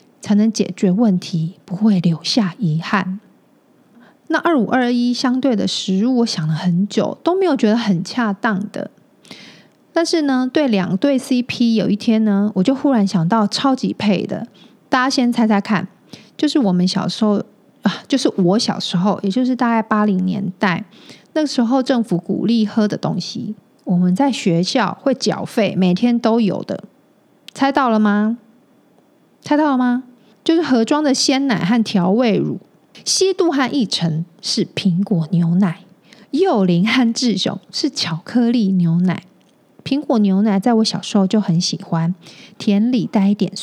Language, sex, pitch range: Chinese, female, 195-255 Hz